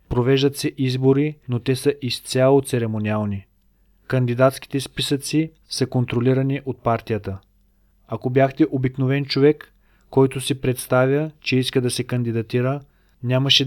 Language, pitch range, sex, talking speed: Bulgarian, 110-135 Hz, male, 120 wpm